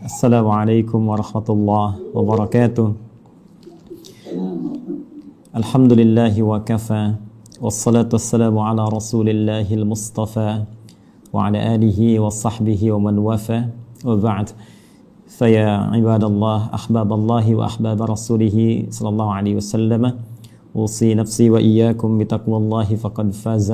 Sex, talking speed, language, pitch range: male, 95 wpm, Indonesian, 110-115 Hz